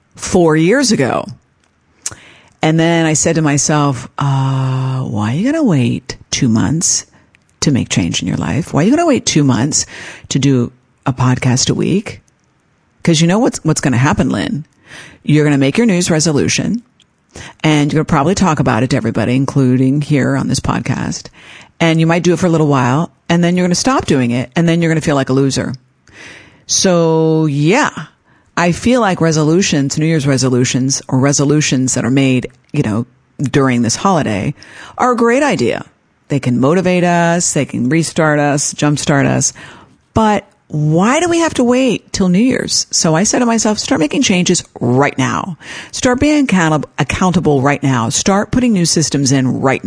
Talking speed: 190 wpm